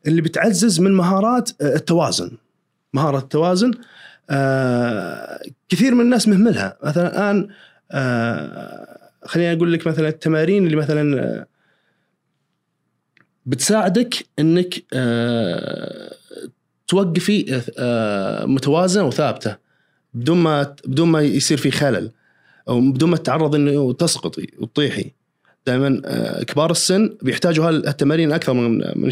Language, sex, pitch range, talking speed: Arabic, male, 125-185 Hz, 95 wpm